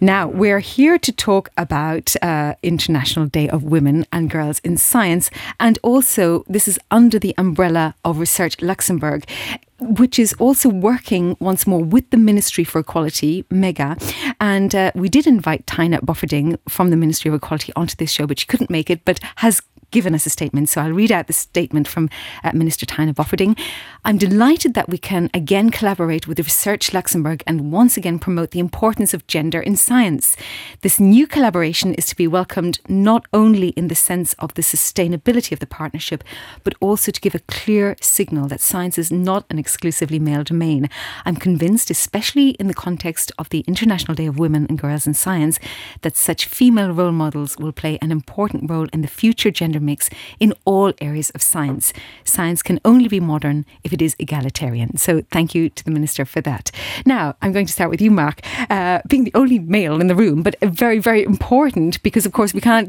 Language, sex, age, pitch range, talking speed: English, female, 30-49, 155-205 Hz, 200 wpm